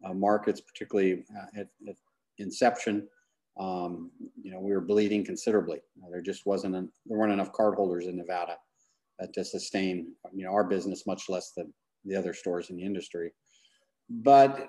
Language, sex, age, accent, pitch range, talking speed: English, male, 40-59, American, 95-115 Hz, 170 wpm